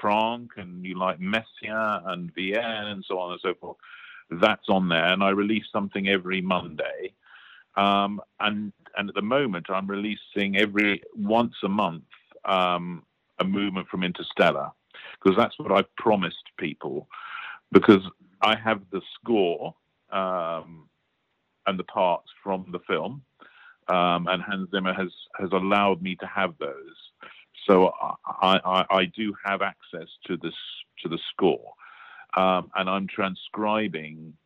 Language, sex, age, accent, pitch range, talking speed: English, male, 40-59, British, 90-105 Hz, 145 wpm